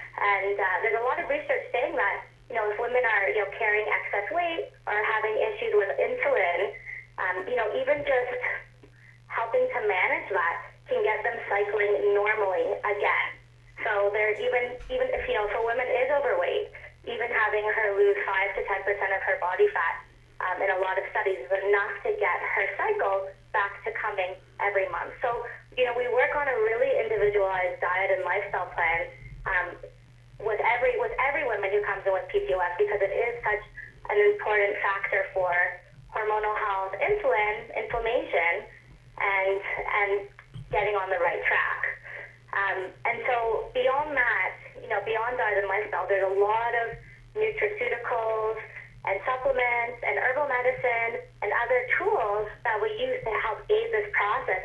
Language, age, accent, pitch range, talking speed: English, 20-39, American, 195-260 Hz, 170 wpm